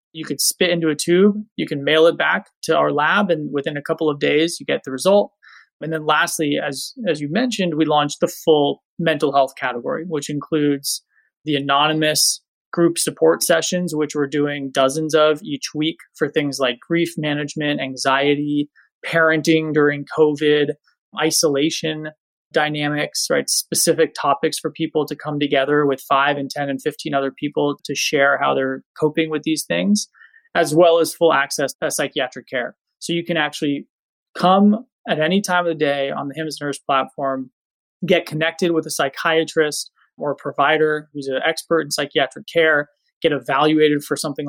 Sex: male